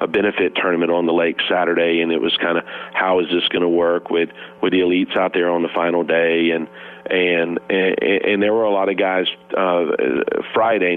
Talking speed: 220 wpm